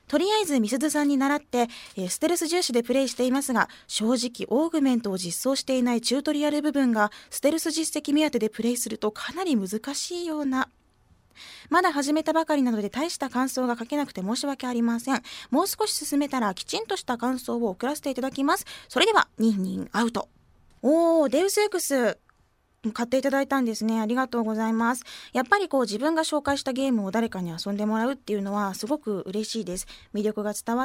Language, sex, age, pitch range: Japanese, female, 20-39, 215-290 Hz